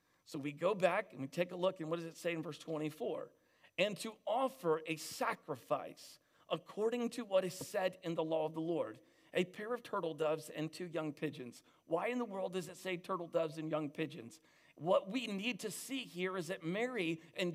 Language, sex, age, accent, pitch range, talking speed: English, male, 40-59, American, 160-215 Hz, 220 wpm